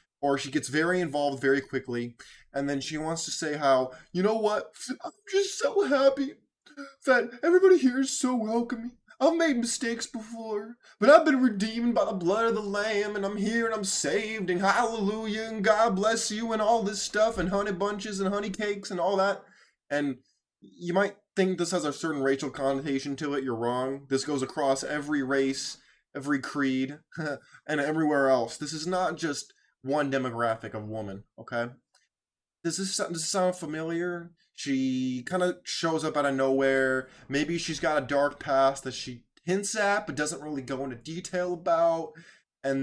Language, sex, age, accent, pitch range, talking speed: English, male, 20-39, American, 140-210 Hz, 180 wpm